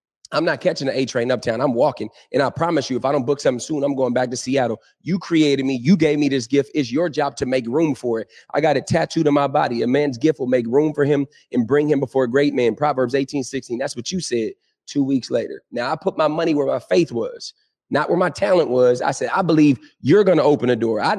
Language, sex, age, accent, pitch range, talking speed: English, male, 30-49, American, 125-160 Hz, 270 wpm